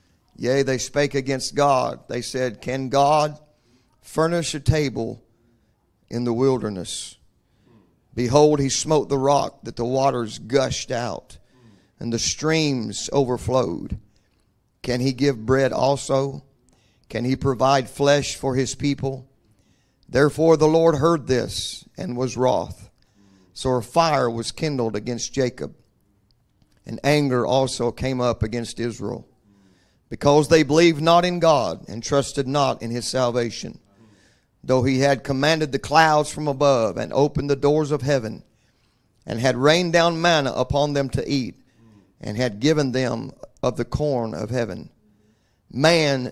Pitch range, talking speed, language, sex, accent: 115-145 Hz, 140 wpm, English, male, American